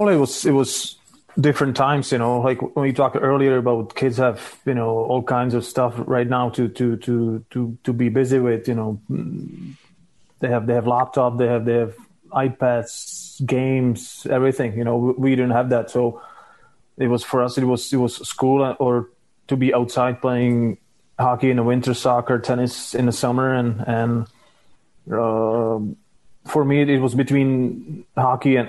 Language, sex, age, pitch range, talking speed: English, male, 20-39, 115-130 Hz, 185 wpm